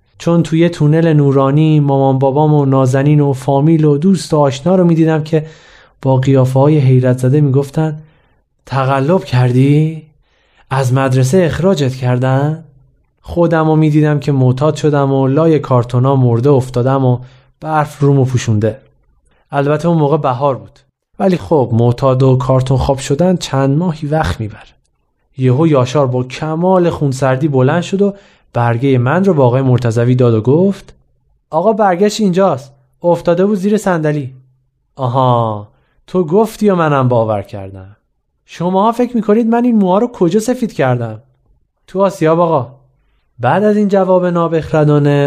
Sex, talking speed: male, 145 wpm